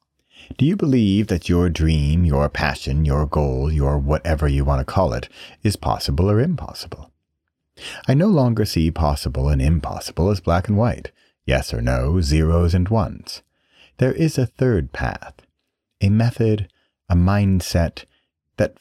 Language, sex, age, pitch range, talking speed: English, male, 40-59, 75-110 Hz, 155 wpm